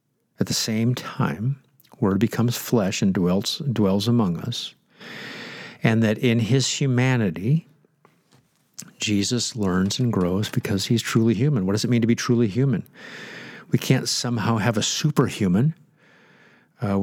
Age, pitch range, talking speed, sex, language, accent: 50-69, 115-145 Hz, 140 wpm, male, English, American